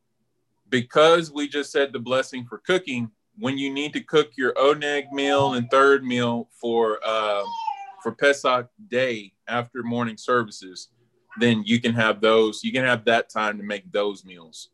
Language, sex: English, male